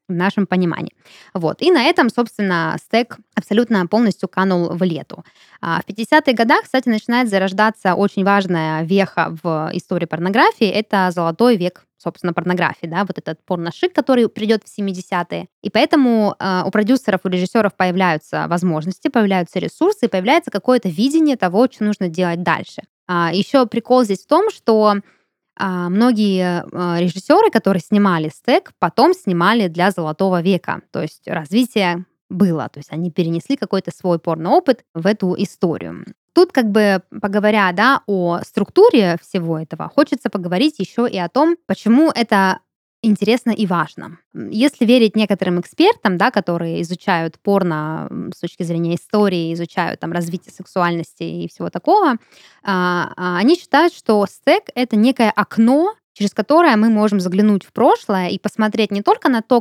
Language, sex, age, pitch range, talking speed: Russian, female, 20-39, 180-235 Hz, 150 wpm